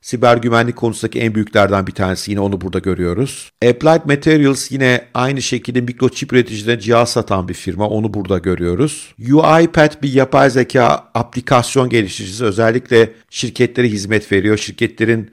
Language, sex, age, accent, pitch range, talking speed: Turkish, male, 50-69, native, 110-140 Hz, 140 wpm